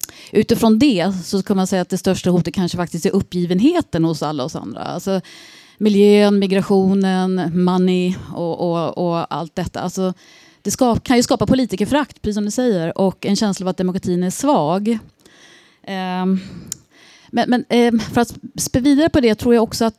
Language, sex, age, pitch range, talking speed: Swedish, female, 30-49, 190-245 Hz, 175 wpm